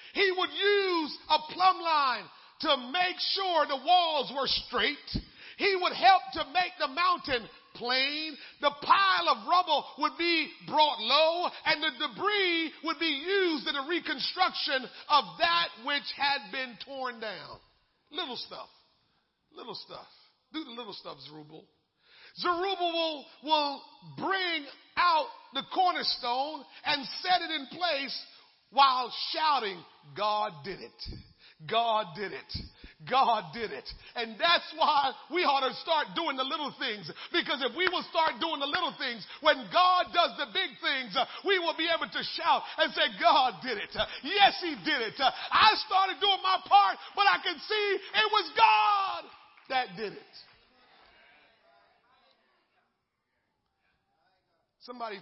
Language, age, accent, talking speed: English, 40-59, American, 145 wpm